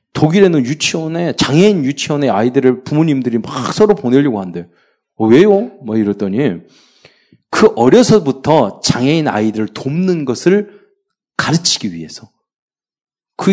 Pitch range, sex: 110-185 Hz, male